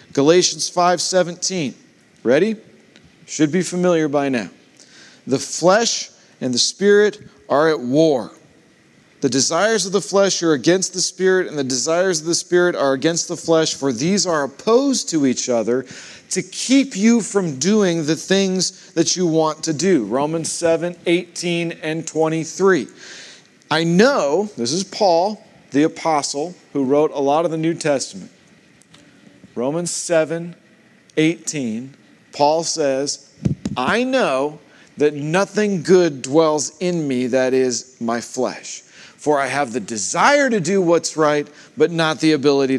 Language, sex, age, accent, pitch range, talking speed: English, male, 40-59, American, 145-180 Hz, 145 wpm